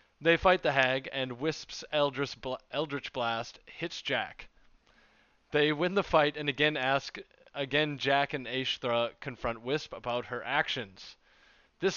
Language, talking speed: English, 140 wpm